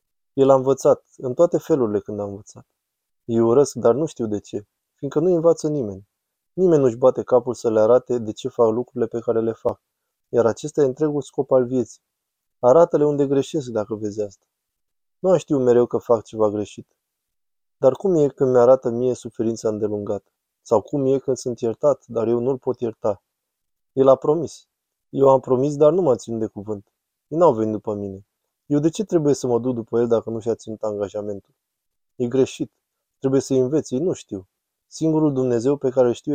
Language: Romanian